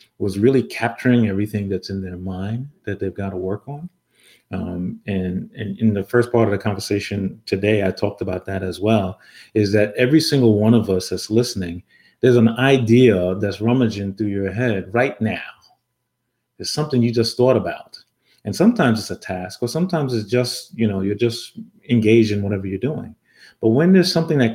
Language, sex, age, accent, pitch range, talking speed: English, male, 30-49, American, 100-125 Hz, 195 wpm